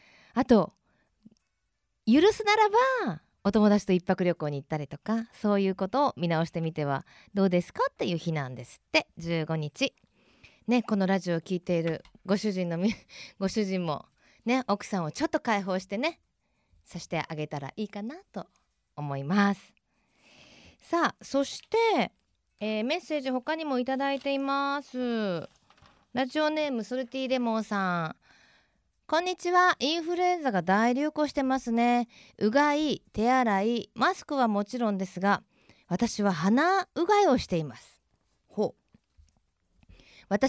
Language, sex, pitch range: Japanese, female, 185-275 Hz